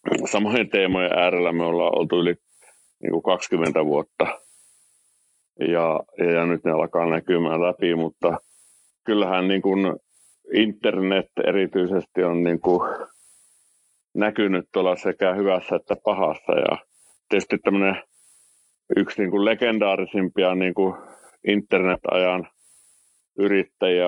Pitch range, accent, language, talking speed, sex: 85-95 Hz, native, Finnish, 110 wpm, male